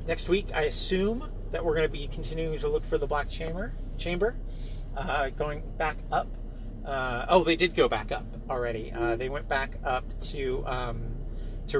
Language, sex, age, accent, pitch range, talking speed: English, male, 30-49, American, 115-140 Hz, 190 wpm